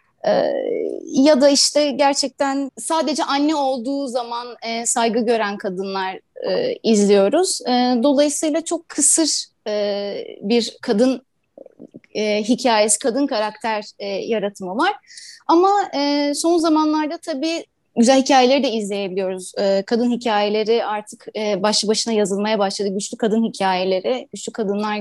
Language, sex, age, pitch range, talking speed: Turkish, female, 30-49, 220-320 Hz, 100 wpm